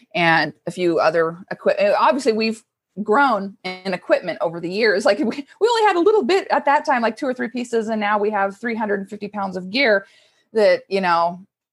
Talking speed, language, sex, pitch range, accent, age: 200 wpm, English, female, 175-240 Hz, American, 30-49